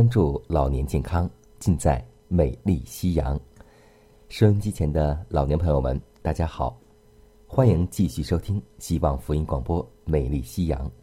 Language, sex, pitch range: Chinese, male, 70-105 Hz